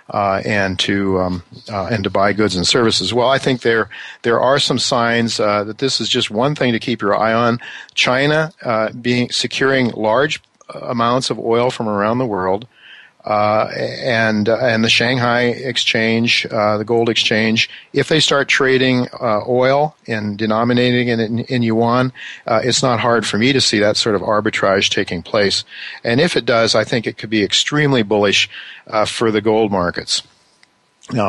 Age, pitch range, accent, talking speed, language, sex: 50-69, 105-125 Hz, American, 190 wpm, English, male